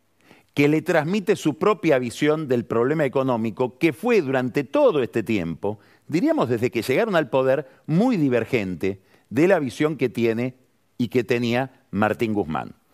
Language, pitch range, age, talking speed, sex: Spanish, 120-175 Hz, 50-69, 155 wpm, male